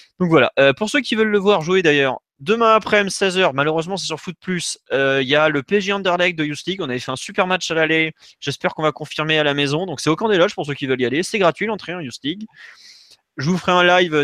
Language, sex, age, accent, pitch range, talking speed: French, male, 20-39, French, 130-170 Hz, 280 wpm